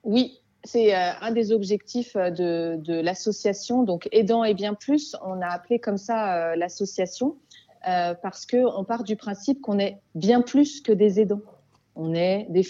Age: 30-49